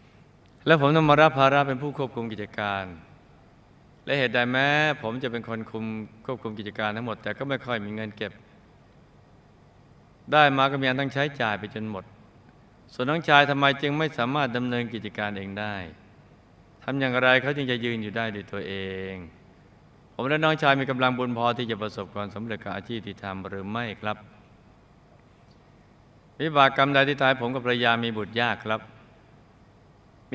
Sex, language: male, Thai